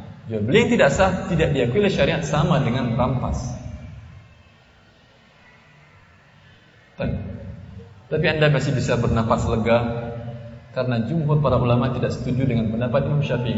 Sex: male